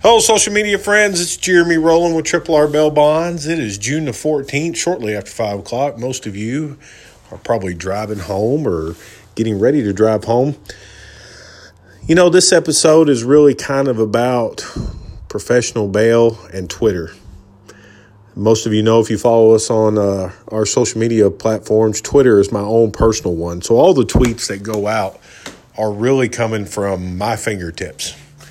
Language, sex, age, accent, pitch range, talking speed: English, male, 40-59, American, 105-130 Hz, 170 wpm